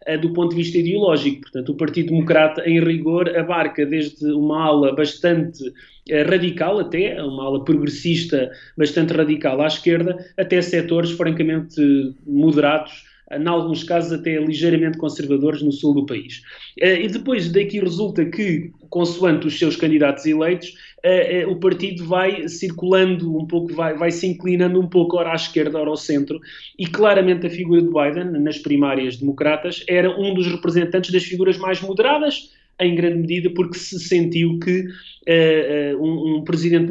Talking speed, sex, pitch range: 155 wpm, male, 155-185 Hz